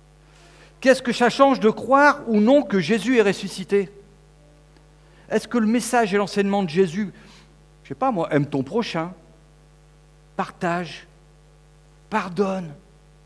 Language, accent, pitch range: French, French, 150-185 Hz